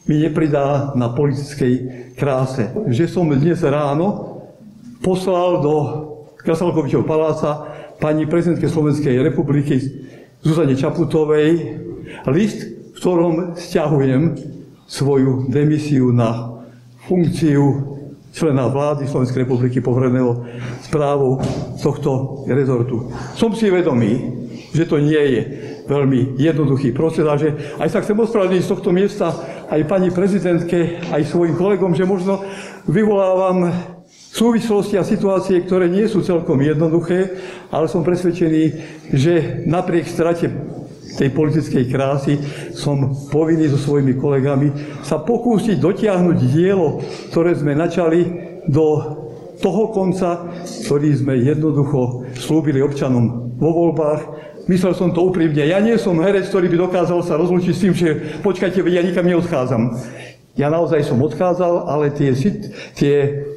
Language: Slovak